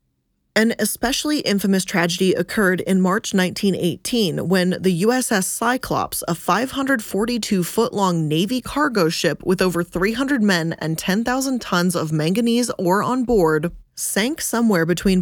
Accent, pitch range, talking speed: American, 175-230 Hz, 135 wpm